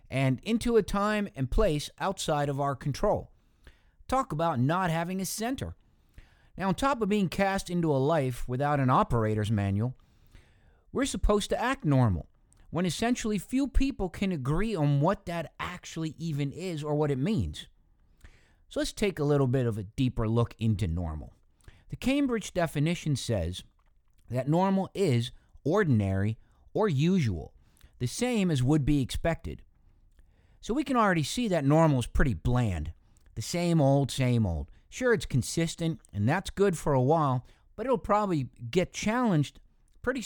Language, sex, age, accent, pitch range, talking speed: English, male, 50-69, American, 115-185 Hz, 160 wpm